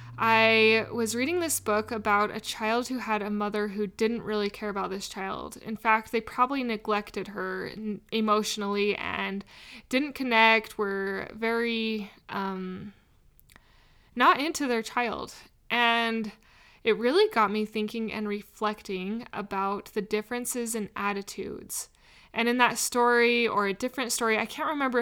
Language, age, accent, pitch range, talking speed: English, 20-39, American, 205-235 Hz, 145 wpm